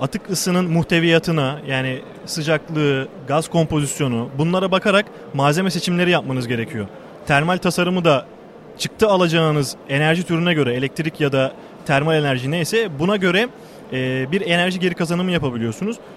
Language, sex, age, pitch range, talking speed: Turkish, male, 30-49, 145-190 Hz, 130 wpm